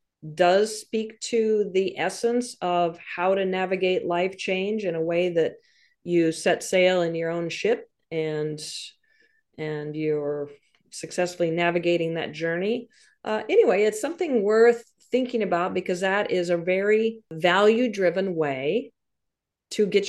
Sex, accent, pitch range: female, American, 165-215 Hz